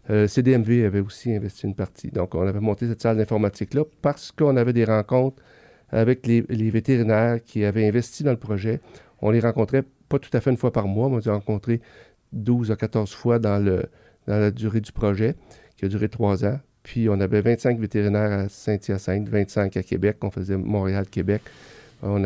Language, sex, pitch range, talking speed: French, male, 100-115 Hz, 200 wpm